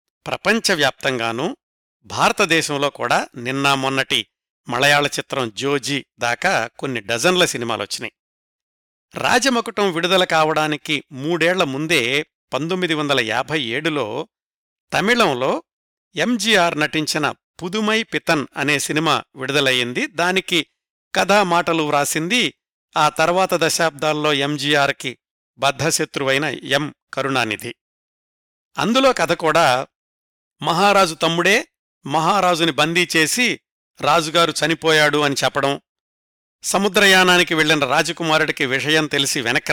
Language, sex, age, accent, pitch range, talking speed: Telugu, male, 50-69, native, 140-175 Hz, 90 wpm